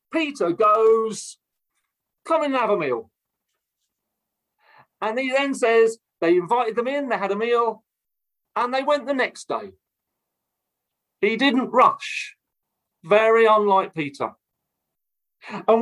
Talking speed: 120 wpm